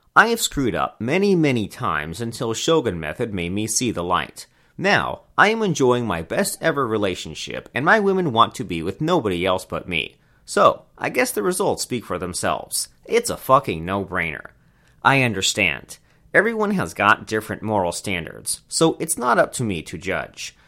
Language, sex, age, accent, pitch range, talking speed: English, male, 30-49, American, 95-150 Hz, 175 wpm